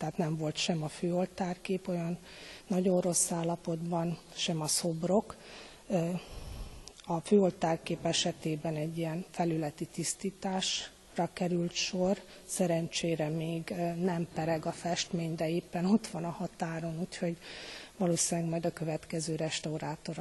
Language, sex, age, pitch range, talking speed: Hungarian, female, 40-59, 160-180 Hz, 120 wpm